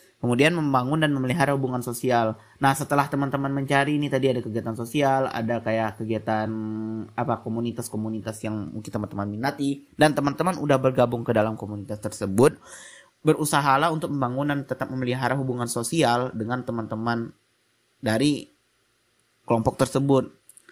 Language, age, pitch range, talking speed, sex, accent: Indonesian, 20-39, 115-135 Hz, 135 wpm, male, native